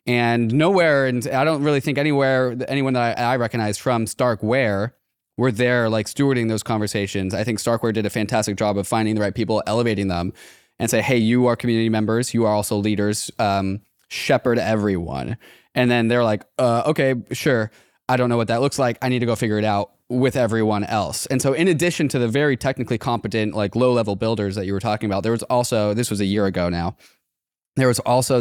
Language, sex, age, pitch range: English, male, 20-39, 105-130 Hz